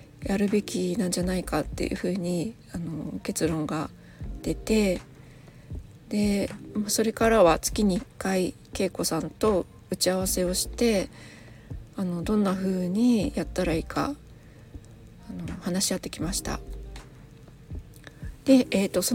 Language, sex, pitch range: Japanese, female, 180-230 Hz